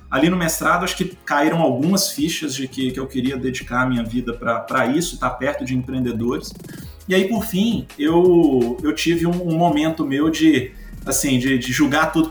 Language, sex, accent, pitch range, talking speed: Portuguese, male, Brazilian, 125-160 Hz, 200 wpm